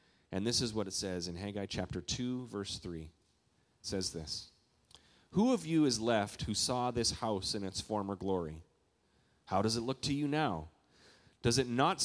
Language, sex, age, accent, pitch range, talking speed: English, male, 30-49, American, 95-140 Hz, 190 wpm